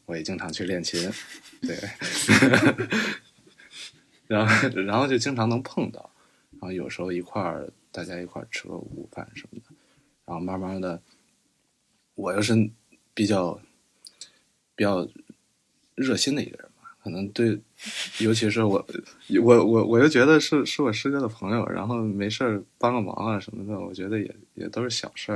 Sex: male